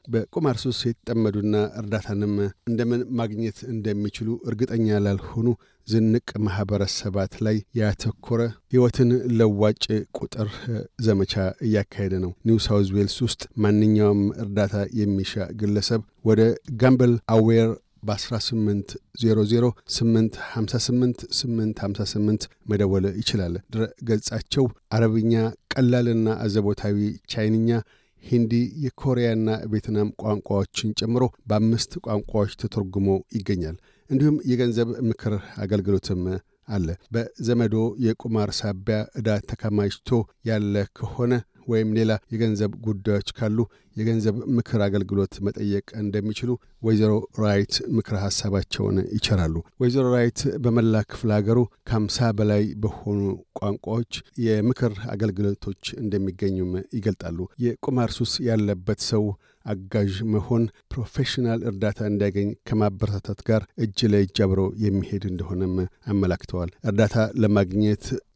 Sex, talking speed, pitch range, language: male, 90 wpm, 100-115 Hz, Amharic